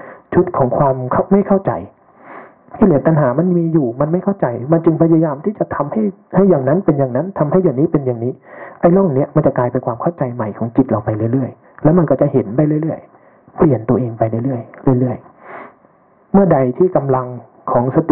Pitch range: 125-165 Hz